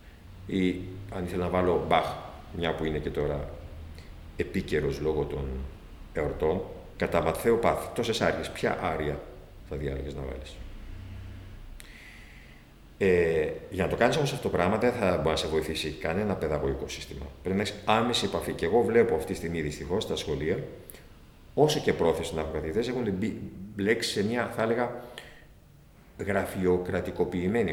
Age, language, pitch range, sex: 50-69, Greek, 80-115 Hz, male